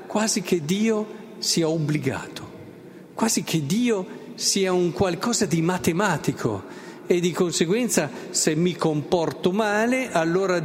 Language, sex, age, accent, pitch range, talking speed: Italian, male, 50-69, native, 130-185 Hz, 120 wpm